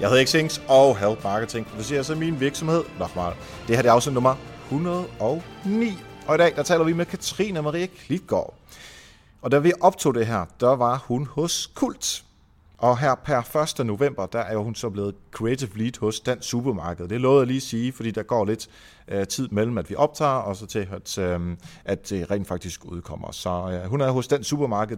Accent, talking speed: native, 210 wpm